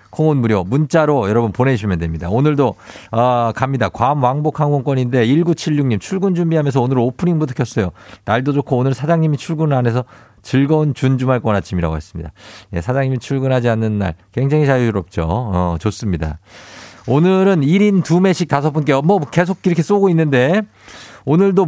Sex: male